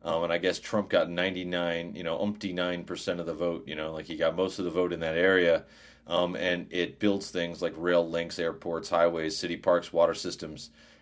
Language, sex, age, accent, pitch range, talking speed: English, male, 30-49, American, 85-105 Hz, 220 wpm